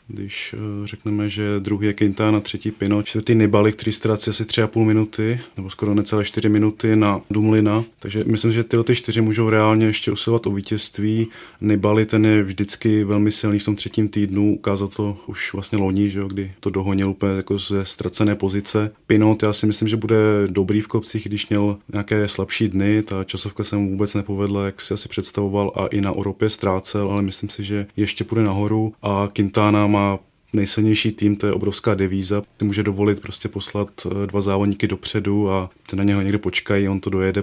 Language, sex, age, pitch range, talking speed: Czech, male, 20-39, 100-110 Hz, 195 wpm